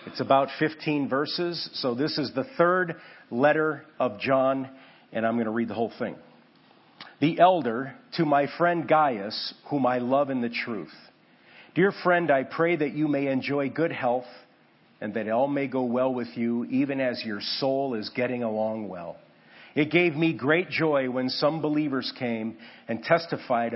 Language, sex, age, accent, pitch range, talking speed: English, male, 50-69, American, 120-150 Hz, 175 wpm